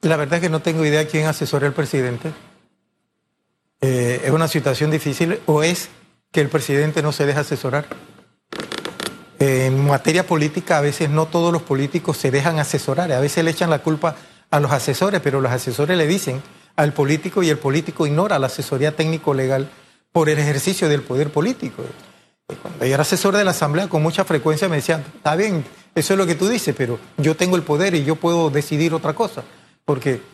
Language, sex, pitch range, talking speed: Spanish, male, 150-180 Hz, 195 wpm